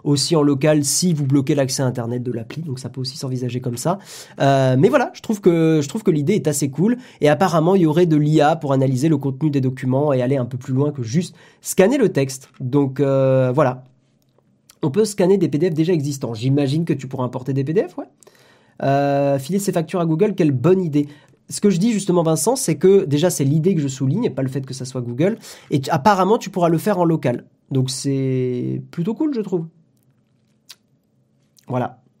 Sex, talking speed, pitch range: male, 220 wpm, 135-185 Hz